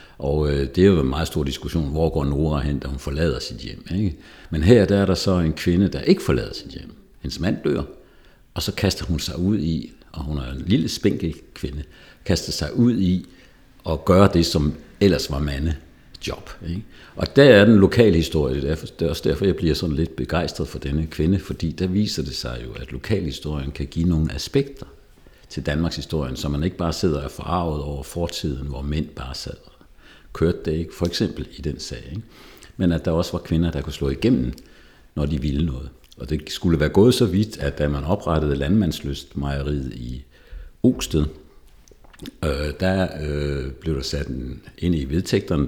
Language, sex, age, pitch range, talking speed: Danish, male, 60-79, 70-85 Hz, 200 wpm